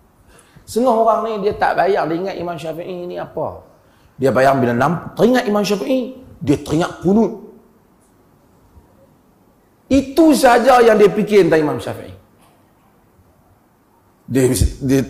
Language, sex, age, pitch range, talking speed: Malay, male, 40-59, 175-250 Hz, 125 wpm